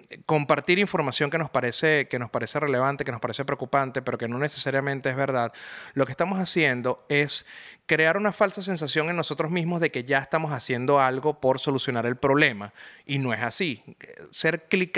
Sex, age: male, 30-49